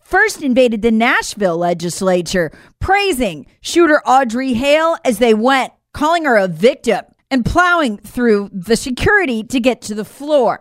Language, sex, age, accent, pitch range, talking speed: English, female, 40-59, American, 220-295 Hz, 145 wpm